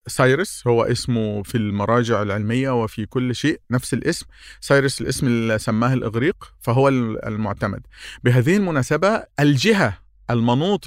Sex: male